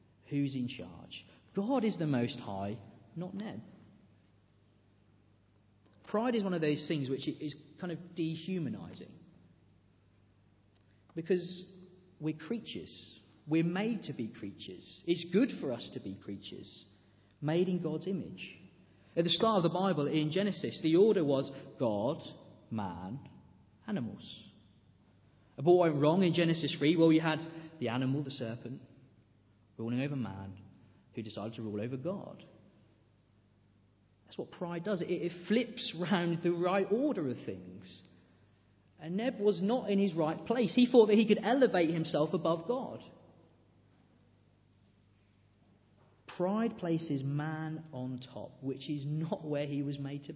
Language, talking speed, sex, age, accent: English, 140 wpm, male, 40-59, British